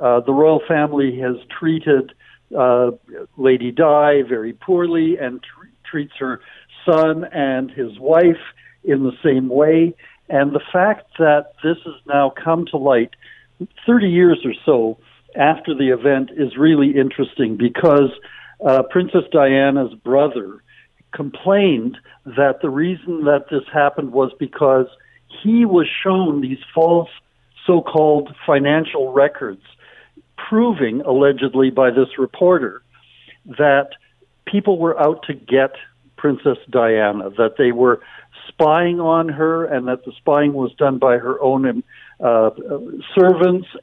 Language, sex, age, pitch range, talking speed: English, male, 60-79, 135-170 Hz, 130 wpm